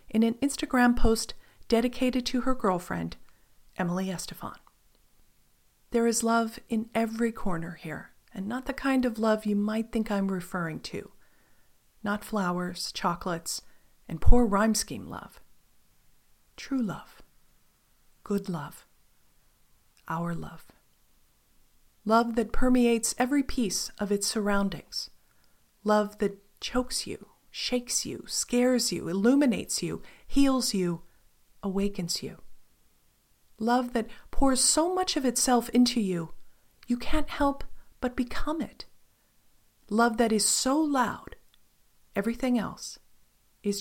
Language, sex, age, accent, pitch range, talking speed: English, female, 40-59, American, 200-250 Hz, 120 wpm